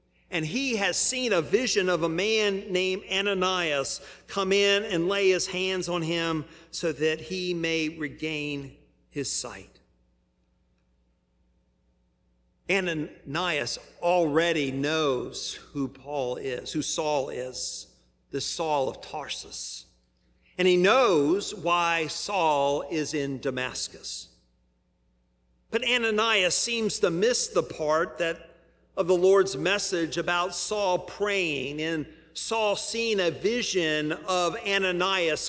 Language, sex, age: English, male, 50-69